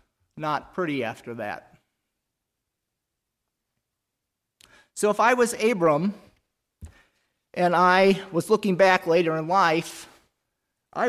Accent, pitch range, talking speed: American, 150-185 Hz, 95 wpm